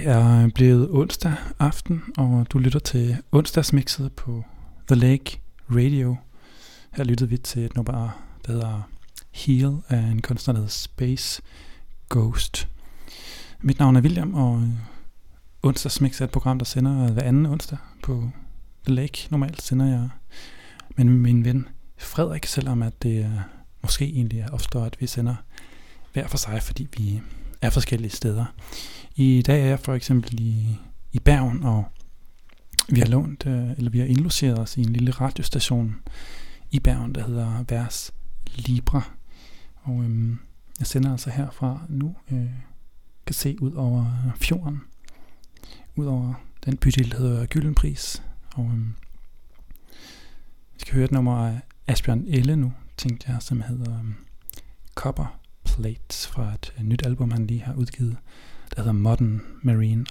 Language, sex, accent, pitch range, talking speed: English, male, Danish, 115-135 Hz, 145 wpm